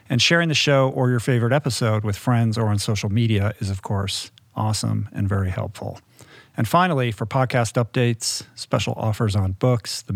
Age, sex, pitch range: 50-69, male, 105-125 Hz